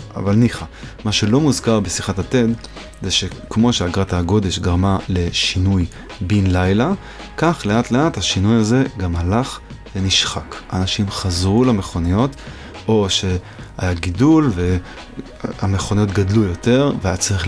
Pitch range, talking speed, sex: 95-120 Hz, 115 wpm, male